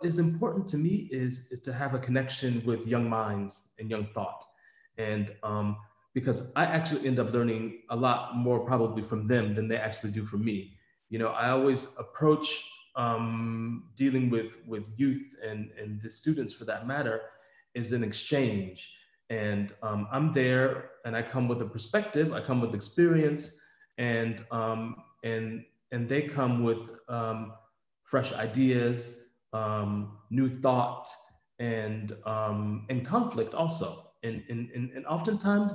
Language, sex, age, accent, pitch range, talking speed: English, male, 30-49, American, 115-140 Hz, 150 wpm